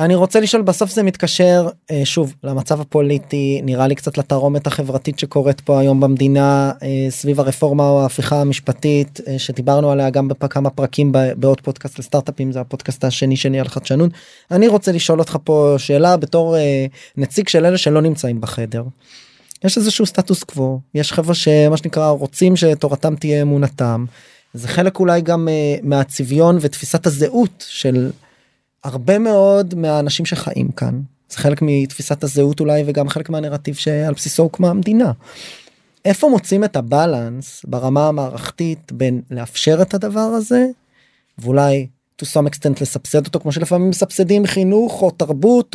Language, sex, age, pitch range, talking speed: Hebrew, male, 20-39, 140-175 Hz, 140 wpm